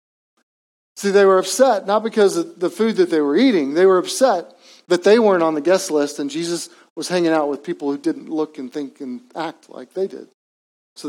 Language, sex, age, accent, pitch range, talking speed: English, male, 40-59, American, 160-195 Hz, 220 wpm